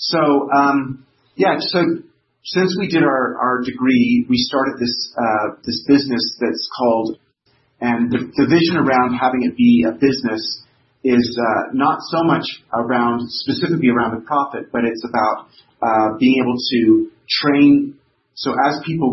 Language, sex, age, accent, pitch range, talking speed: English, male, 30-49, American, 115-130 Hz, 155 wpm